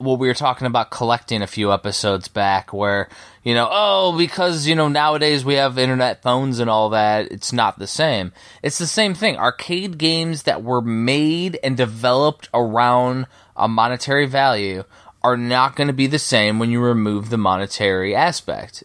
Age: 20-39